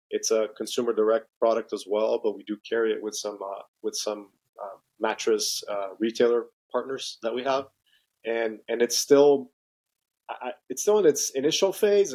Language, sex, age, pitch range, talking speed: English, male, 30-49, 110-130 Hz, 180 wpm